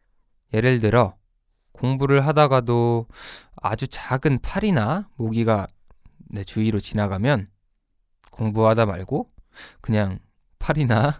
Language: Korean